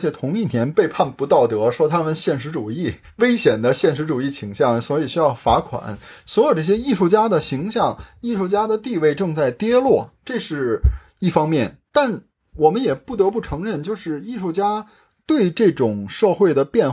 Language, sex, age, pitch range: Chinese, male, 30-49, 150-230 Hz